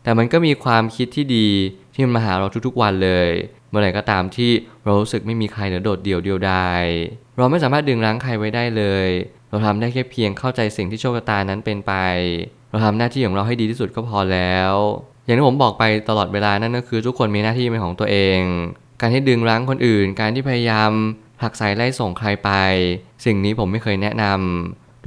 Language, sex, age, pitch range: Thai, male, 20-39, 100-120 Hz